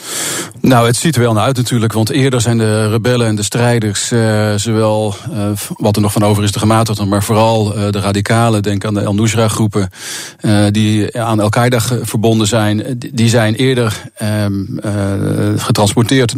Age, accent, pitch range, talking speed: 40-59, Dutch, 110-125 Hz, 180 wpm